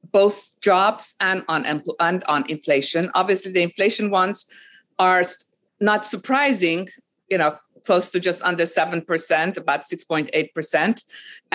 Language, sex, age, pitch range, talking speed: English, female, 50-69, 180-240 Hz, 115 wpm